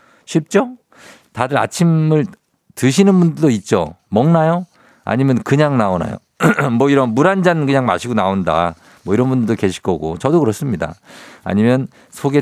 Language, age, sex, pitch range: Korean, 50-69, male, 105-150 Hz